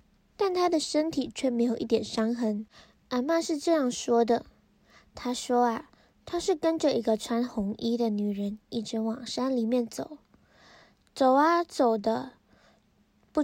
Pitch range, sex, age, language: 230-280 Hz, female, 10-29, Chinese